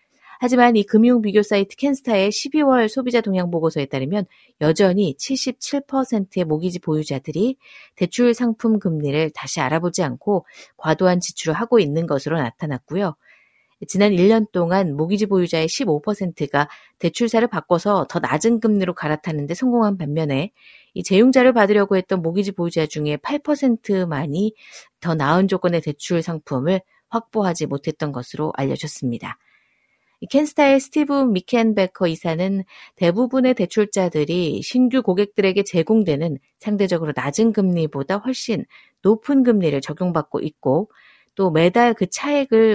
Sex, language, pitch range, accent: female, Korean, 160-230 Hz, native